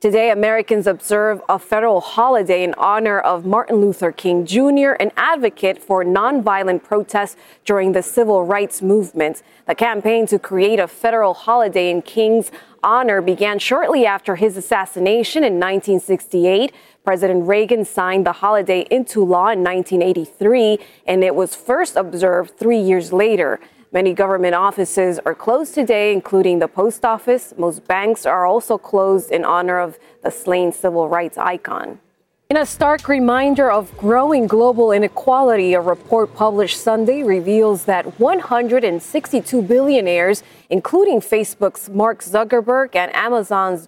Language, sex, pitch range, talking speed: English, female, 185-230 Hz, 140 wpm